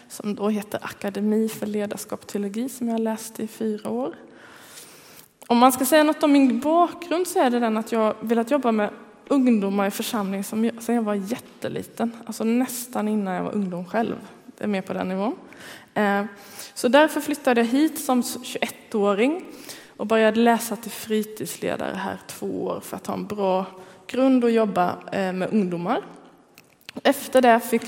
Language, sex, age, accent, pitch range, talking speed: Swedish, female, 20-39, native, 200-255 Hz, 170 wpm